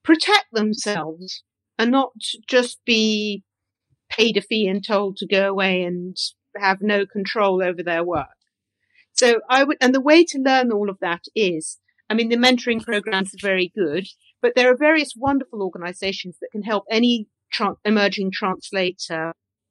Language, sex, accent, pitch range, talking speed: English, female, British, 180-225 Hz, 165 wpm